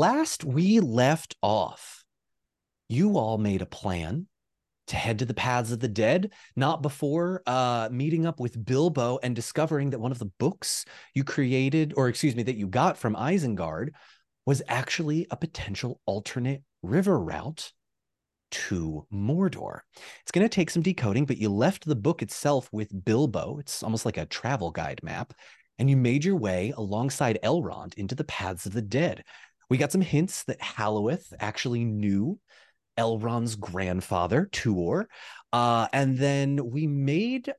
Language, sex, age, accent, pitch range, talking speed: English, male, 30-49, American, 110-160 Hz, 160 wpm